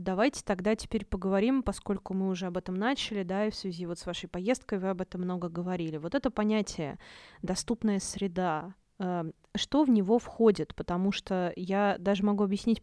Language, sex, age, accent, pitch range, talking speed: Russian, female, 20-39, native, 175-220 Hz, 180 wpm